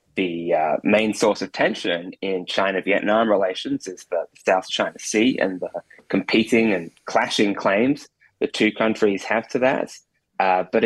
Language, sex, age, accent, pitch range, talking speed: English, male, 20-39, British, 95-115 Hz, 155 wpm